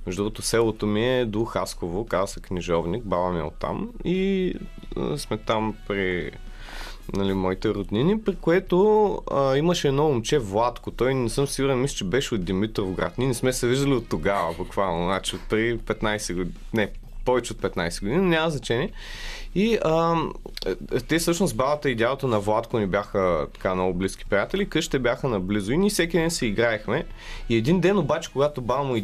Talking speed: 180 wpm